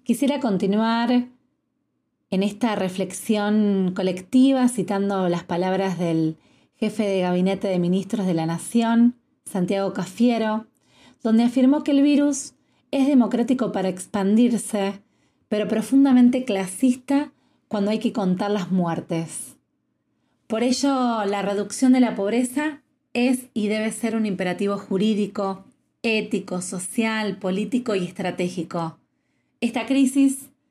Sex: female